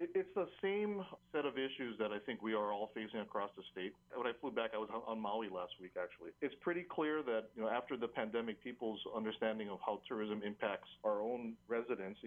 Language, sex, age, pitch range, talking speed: English, male, 40-59, 100-115 Hz, 220 wpm